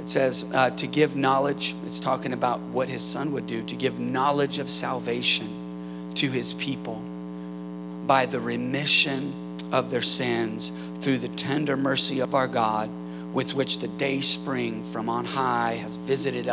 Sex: male